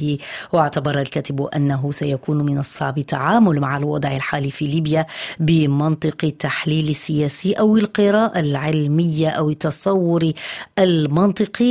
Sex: female